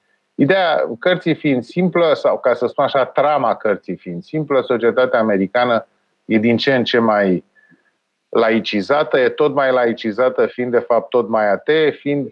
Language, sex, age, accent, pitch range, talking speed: Romanian, male, 30-49, native, 120-180 Hz, 160 wpm